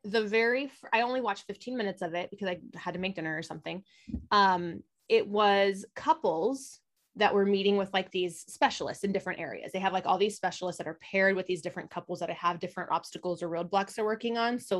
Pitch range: 180-230 Hz